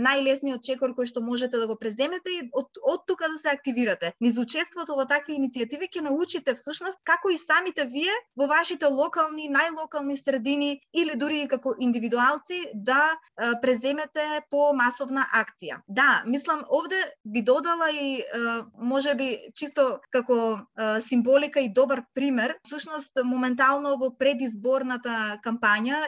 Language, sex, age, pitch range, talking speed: English, female, 20-39, 250-290 Hz, 140 wpm